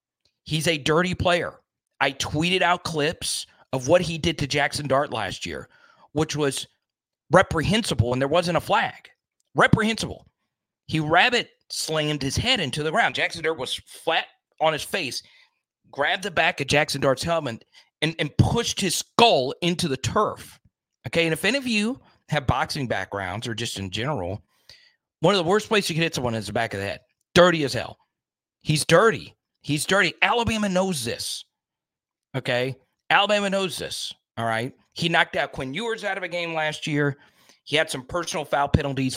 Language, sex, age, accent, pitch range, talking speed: English, male, 40-59, American, 135-180 Hz, 180 wpm